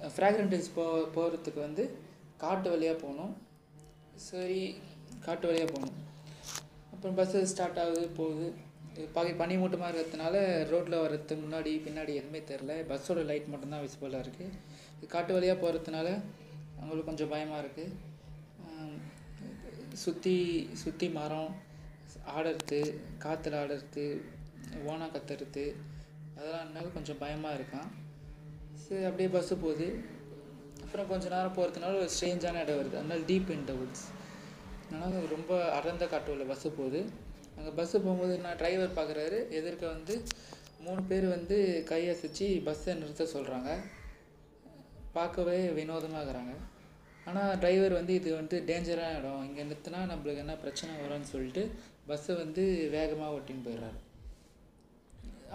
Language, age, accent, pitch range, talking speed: Tamil, 20-39, native, 150-180 Hz, 120 wpm